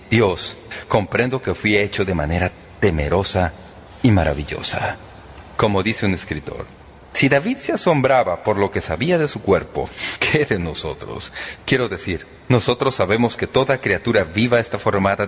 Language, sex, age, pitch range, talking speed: English, male, 40-59, 85-120 Hz, 150 wpm